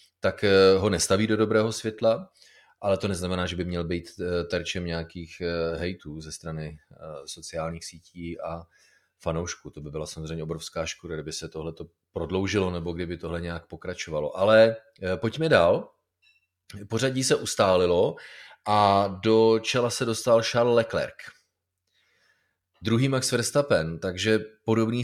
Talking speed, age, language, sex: 135 wpm, 30-49, Czech, male